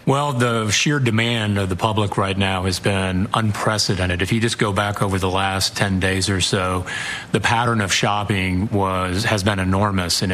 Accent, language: American, English